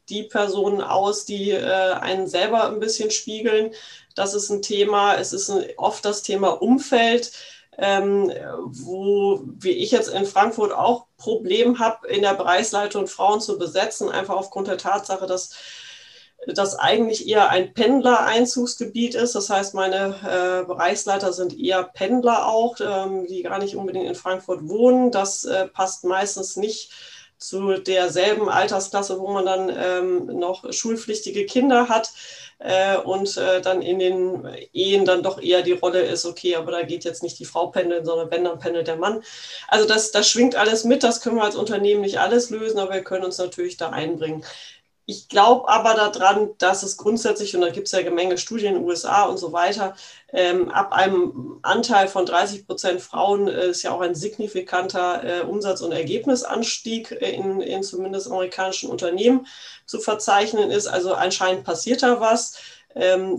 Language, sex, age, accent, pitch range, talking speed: German, female, 30-49, German, 185-220 Hz, 175 wpm